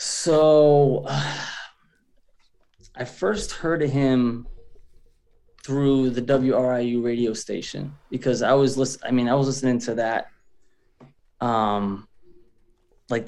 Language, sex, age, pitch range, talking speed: English, male, 20-39, 115-140 Hz, 115 wpm